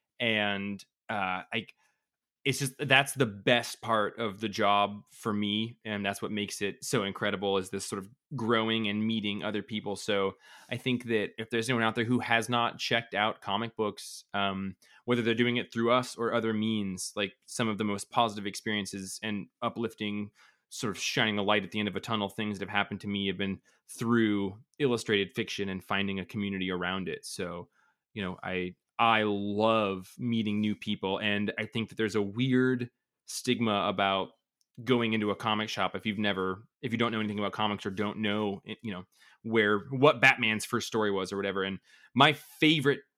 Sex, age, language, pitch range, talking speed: male, 20-39, English, 100-115 Hz, 195 wpm